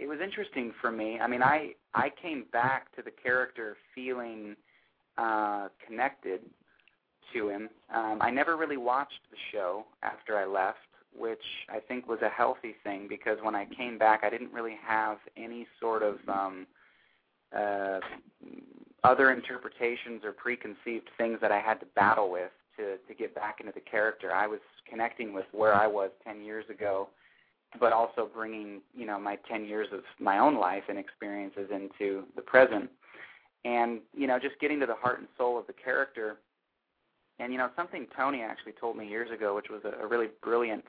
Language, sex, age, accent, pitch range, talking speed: English, male, 30-49, American, 105-125 Hz, 180 wpm